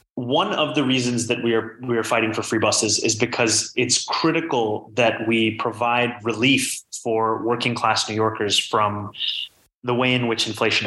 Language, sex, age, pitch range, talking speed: English, male, 20-39, 110-135 Hz, 175 wpm